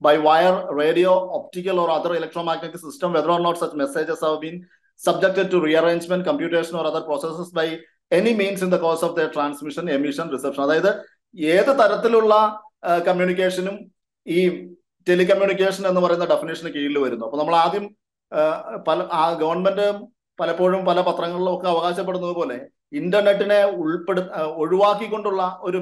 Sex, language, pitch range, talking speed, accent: male, Malayalam, 155-190 Hz, 130 wpm, native